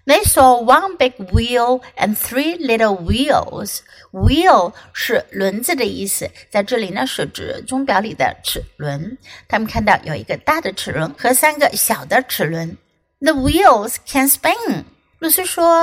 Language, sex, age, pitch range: Chinese, female, 60-79, 215-345 Hz